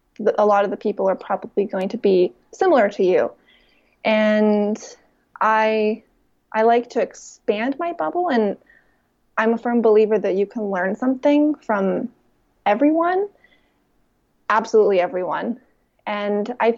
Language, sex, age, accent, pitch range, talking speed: English, female, 20-39, American, 200-245 Hz, 130 wpm